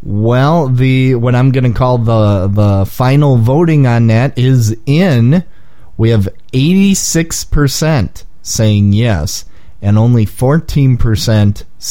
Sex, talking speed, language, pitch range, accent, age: male, 115 wpm, English, 100-130 Hz, American, 30-49